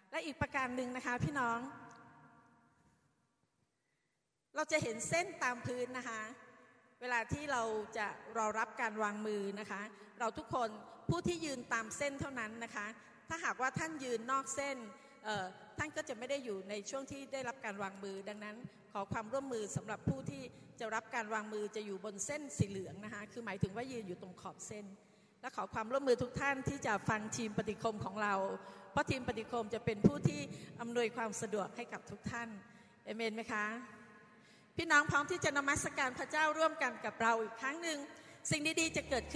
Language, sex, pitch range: Thai, female, 205-255 Hz